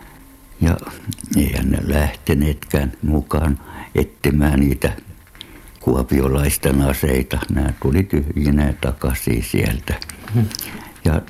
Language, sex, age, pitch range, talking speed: Finnish, male, 60-79, 75-95 Hz, 85 wpm